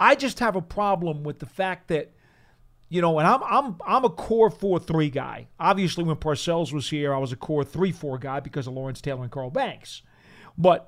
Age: 40-59